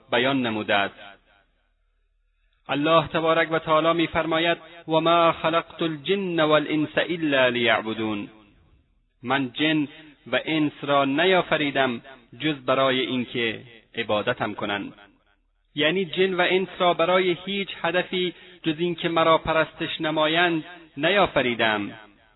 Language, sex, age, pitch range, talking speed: Persian, male, 30-49, 110-160 Hz, 105 wpm